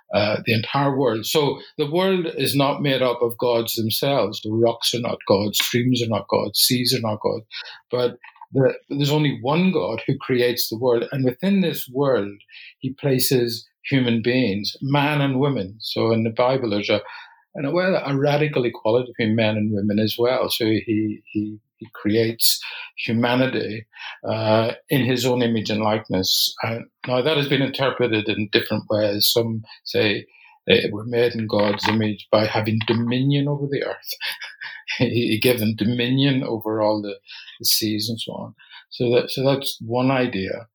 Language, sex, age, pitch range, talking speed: English, male, 50-69, 110-135 Hz, 180 wpm